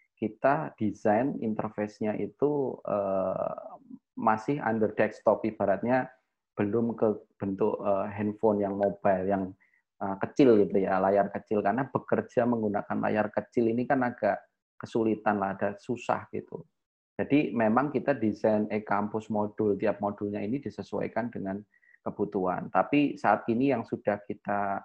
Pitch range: 100-110 Hz